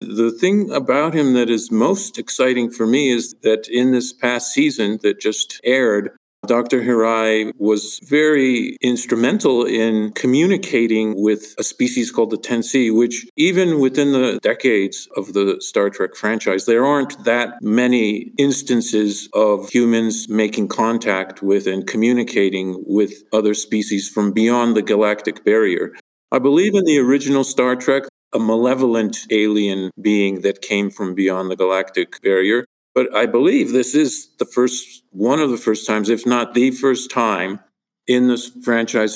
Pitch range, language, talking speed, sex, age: 105-125 Hz, English, 155 wpm, male, 50-69